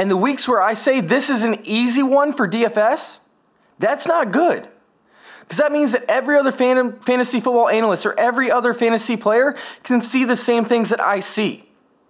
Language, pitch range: English, 210-260 Hz